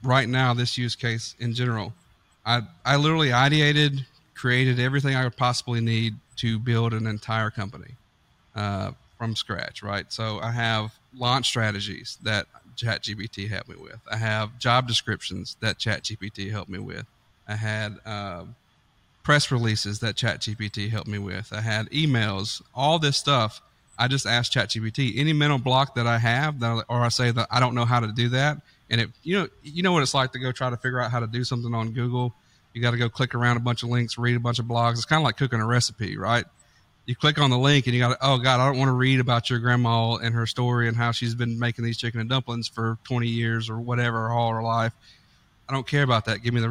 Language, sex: English, male